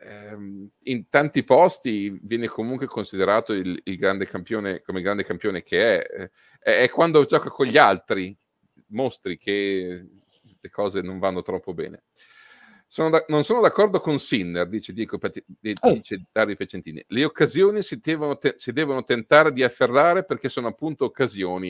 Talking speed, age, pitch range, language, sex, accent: 150 wpm, 40-59, 100-160 Hz, Italian, male, native